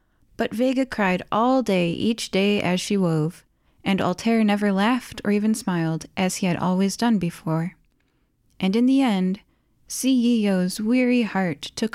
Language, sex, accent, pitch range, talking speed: English, female, American, 175-235 Hz, 155 wpm